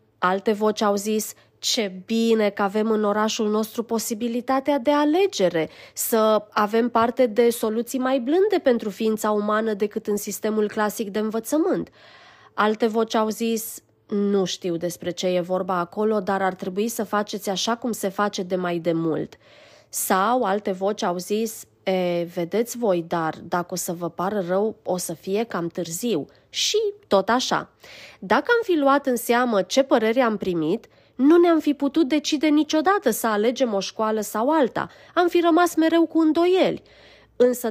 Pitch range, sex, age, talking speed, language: 200-280 Hz, female, 20-39, 170 wpm, Romanian